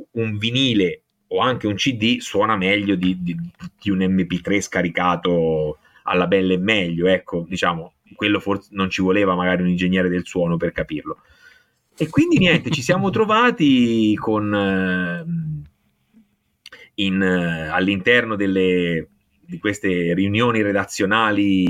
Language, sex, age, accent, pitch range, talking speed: Italian, male, 30-49, native, 95-150 Hz, 135 wpm